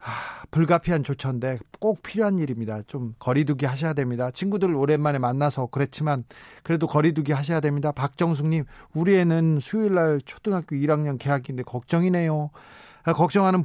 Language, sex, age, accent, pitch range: Korean, male, 40-59, native, 135-175 Hz